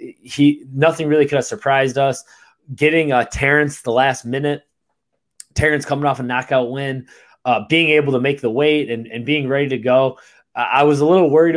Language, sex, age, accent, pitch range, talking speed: English, male, 20-39, American, 125-145 Hz, 200 wpm